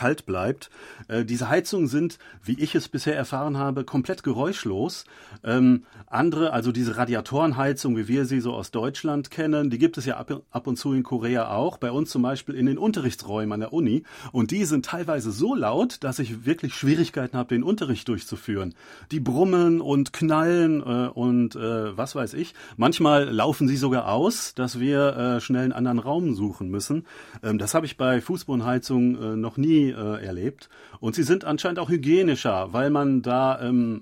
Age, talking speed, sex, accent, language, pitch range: 40-59, 185 wpm, male, German, German, 120-145 Hz